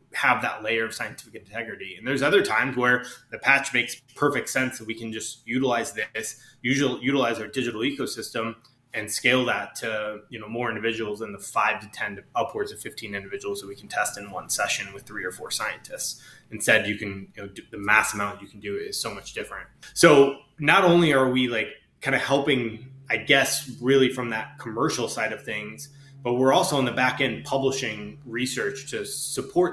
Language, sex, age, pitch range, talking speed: English, male, 20-39, 115-135 Hz, 210 wpm